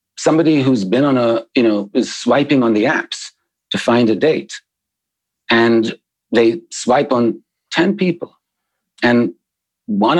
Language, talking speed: English, 140 wpm